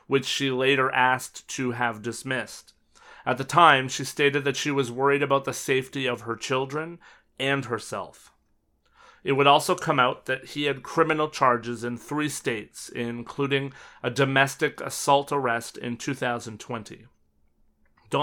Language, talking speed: English, 150 wpm